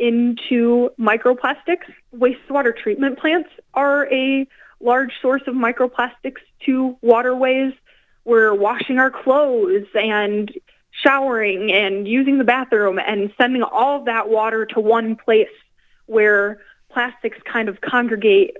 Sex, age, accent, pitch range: female, 20-39, American, 205-255 Hz